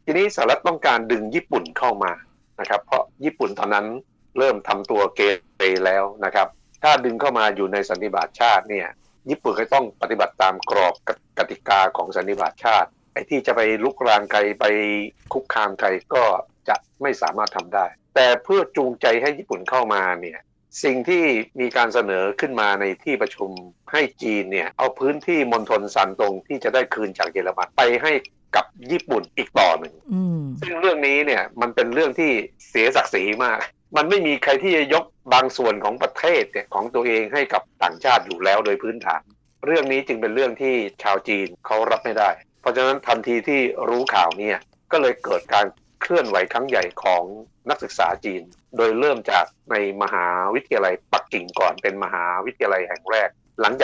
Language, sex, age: Thai, male, 60-79